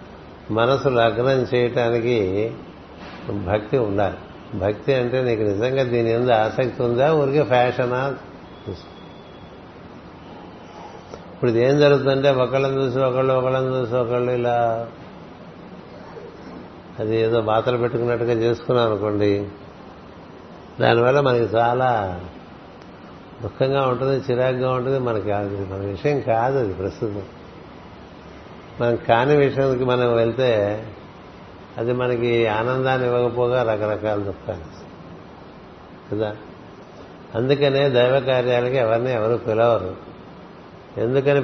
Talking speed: 95 wpm